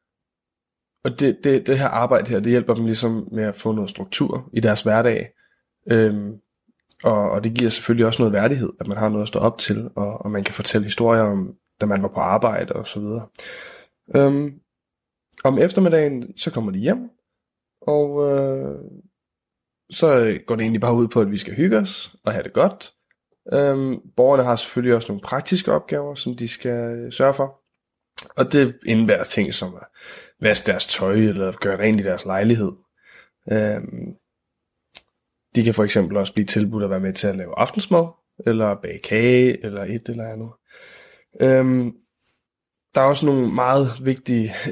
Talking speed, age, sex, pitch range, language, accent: 175 wpm, 20-39, male, 105-130 Hz, Danish, native